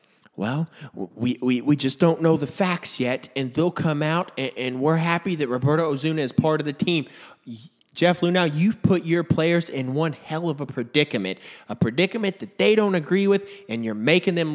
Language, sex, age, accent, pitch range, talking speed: English, male, 30-49, American, 145-190 Hz, 200 wpm